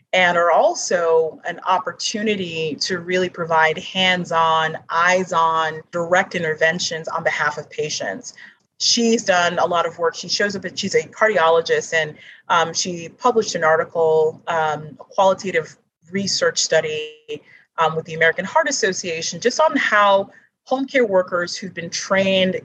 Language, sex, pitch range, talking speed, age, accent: English, female, 165-215 Hz, 145 wpm, 30-49, American